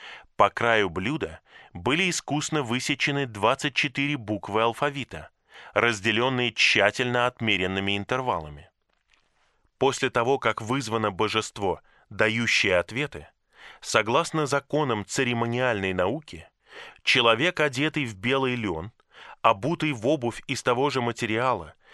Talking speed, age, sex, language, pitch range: 100 wpm, 20-39, male, Russian, 110-140 Hz